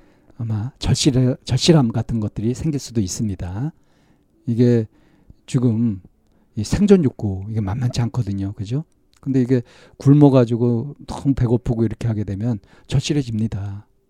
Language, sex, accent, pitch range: Korean, male, native, 110-140 Hz